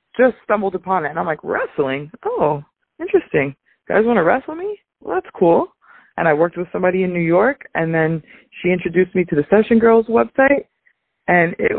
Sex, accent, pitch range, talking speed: female, American, 150-200 Hz, 200 wpm